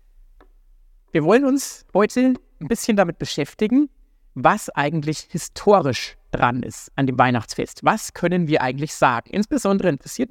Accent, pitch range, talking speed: German, 130-205 Hz, 135 wpm